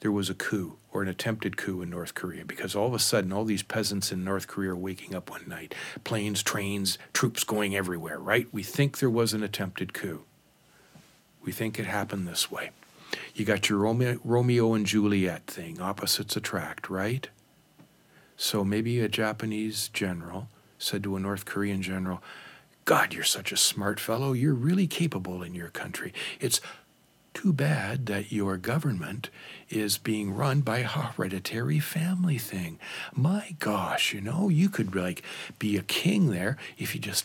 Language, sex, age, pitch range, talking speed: English, male, 60-79, 100-130 Hz, 170 wpm